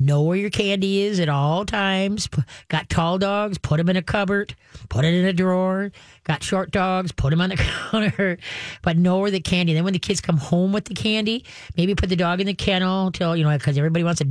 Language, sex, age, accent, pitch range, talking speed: English, female, 40-59, American, 150-185 Hz, 245 wpm